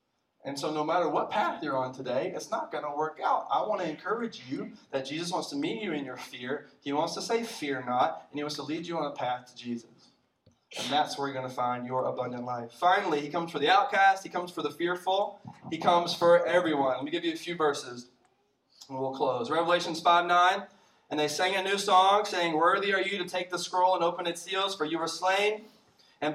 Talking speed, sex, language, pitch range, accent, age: 240 wpm, male, English, 145-190 Hz, American, 20-39